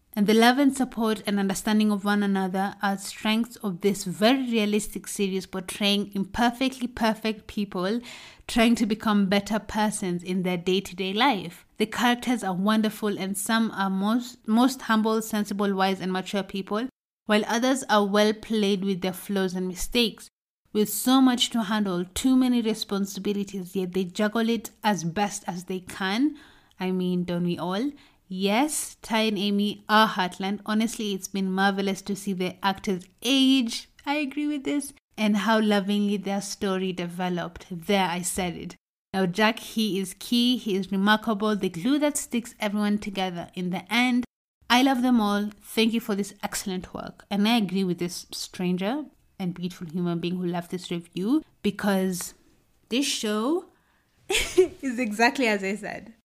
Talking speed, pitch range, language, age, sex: 165 wpm, 190-230 Hz, English, 30-49, female